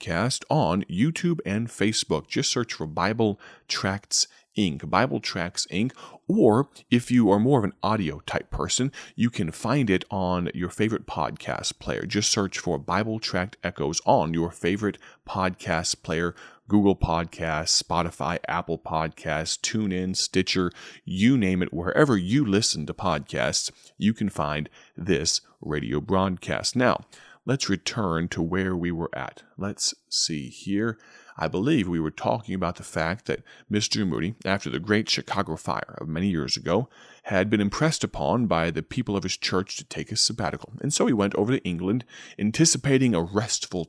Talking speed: 165 wpm